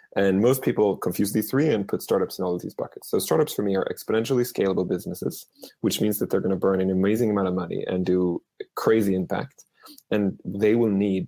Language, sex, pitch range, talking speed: English, male, 95-105 Hz, 225 wpm